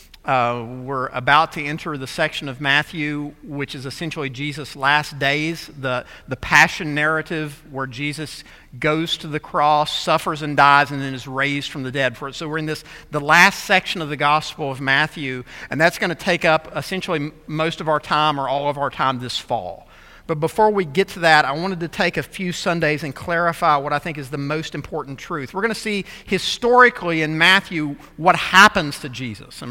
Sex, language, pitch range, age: male, English, 145-180 Hz, 50-69